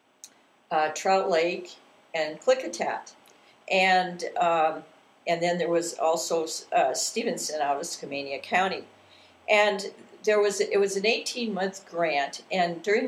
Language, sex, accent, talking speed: English, female, American, 135 wpm